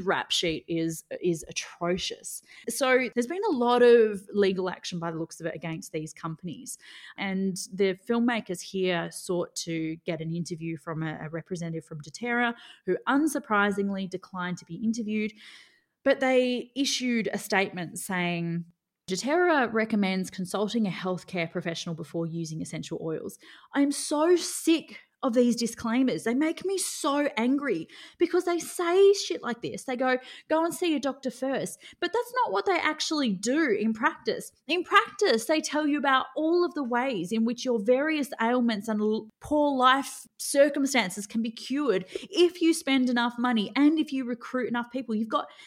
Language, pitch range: English, 190-285 Hz